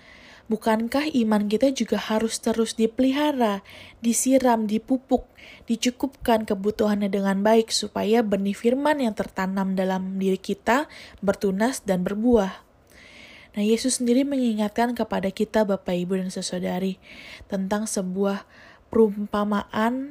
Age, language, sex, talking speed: 20-39, Indonesian, female, 110 wpm